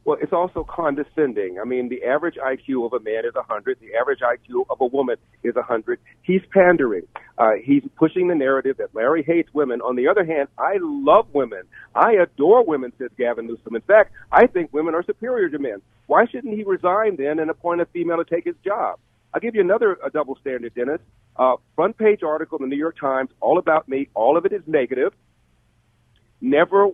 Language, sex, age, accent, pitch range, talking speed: English, male, 40-59, American, 145-205 Hz, 210 wpm